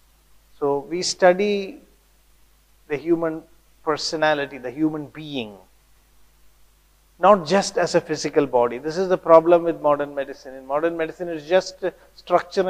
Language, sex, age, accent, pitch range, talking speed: Tamil, male, 50-69, native, 140-175 Hz, 130 wpm